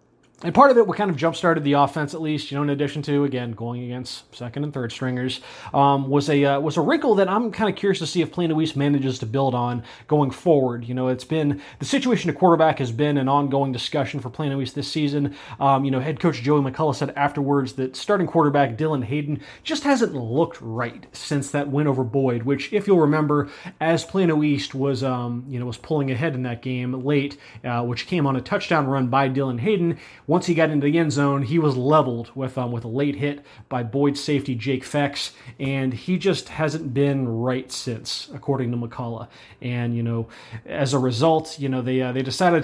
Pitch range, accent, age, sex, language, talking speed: 130-155 Hz, American, 30-49, male, English, 225 wpm